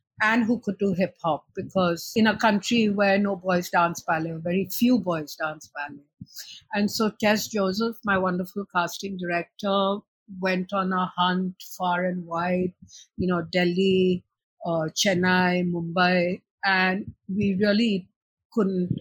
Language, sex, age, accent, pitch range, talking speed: English, female, 50-69, Indian, 175-210 Hz, 140 wpm